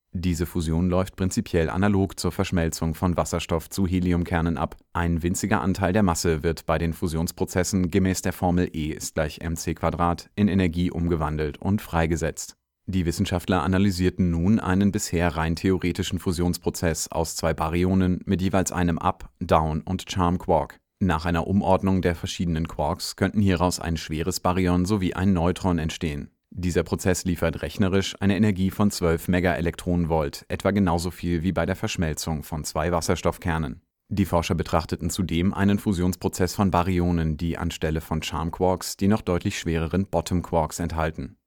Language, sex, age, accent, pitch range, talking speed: German, male, 30-49, German, 80-95 Hz, 150 wpm